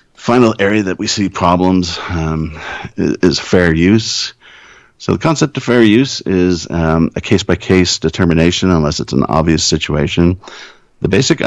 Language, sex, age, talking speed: English, male, 50-69, 150 wpm